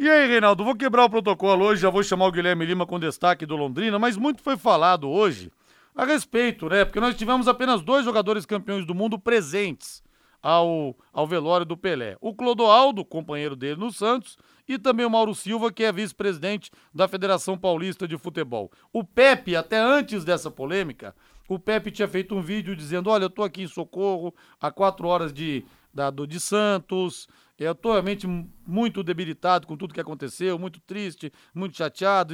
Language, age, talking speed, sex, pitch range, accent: Portuguese, 40-59, 180 wpm, male, 170-220 Hz, Brazilian